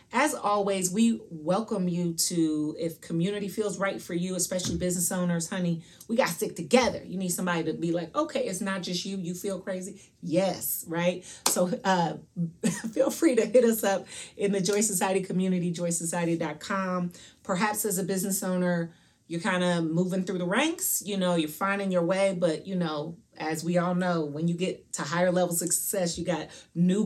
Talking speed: 190 wpm